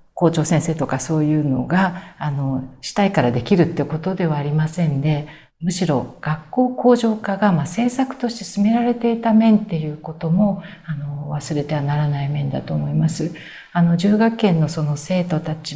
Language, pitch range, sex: Japanese, 155-185 Hz, female